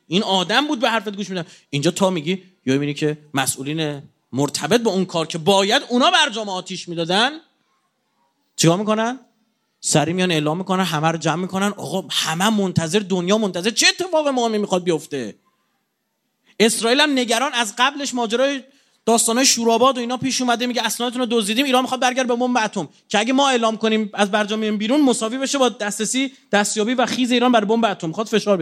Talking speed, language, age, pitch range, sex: 185 wpm, Persian, 30-49, 170-250 Hz, male